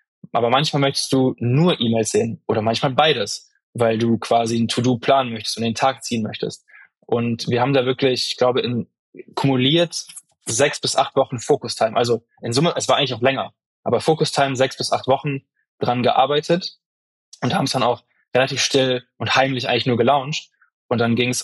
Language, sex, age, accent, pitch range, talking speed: German, male, 10-29, German, 120-135 Hz, 190 wpm